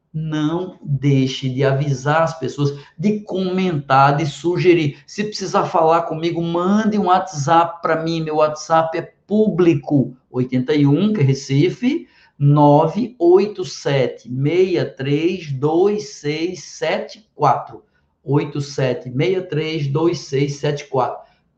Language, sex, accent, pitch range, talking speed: Portuguese, male, Brazilian, 140-170 Hz, 80 wpm